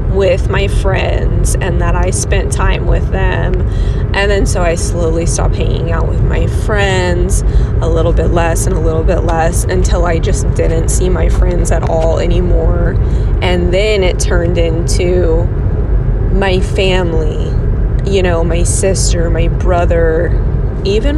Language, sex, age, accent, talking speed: English, female, 20-39, American, 155 wpm